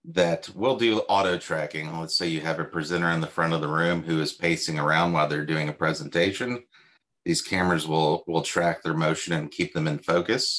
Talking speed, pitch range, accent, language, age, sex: 215 wpm, 80-100 Hz, American, English, 30-49, male